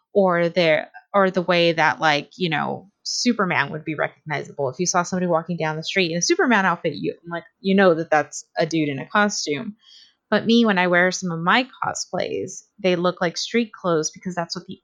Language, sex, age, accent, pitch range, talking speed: English, female, 20-39, American, 165-205 Hz, 210 wpm